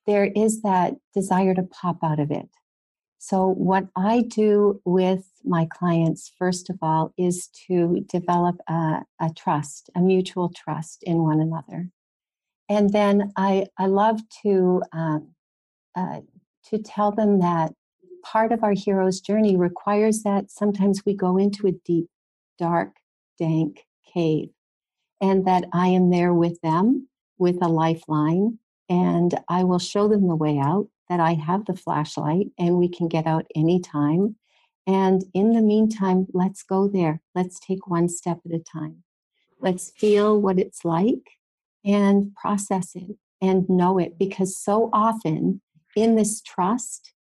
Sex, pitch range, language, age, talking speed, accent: female, 175-205 Hz, English, 60-79, 150 wpm, American